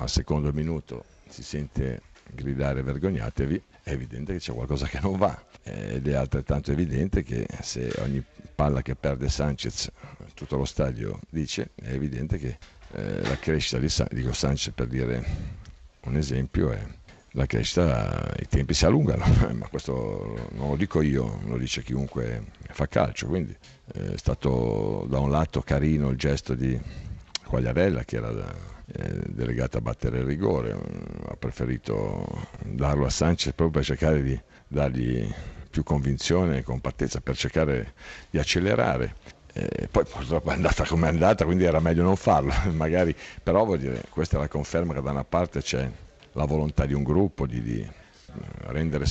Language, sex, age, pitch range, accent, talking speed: Italian, male, 50-69, 65-80 Hz, native, 160 wpm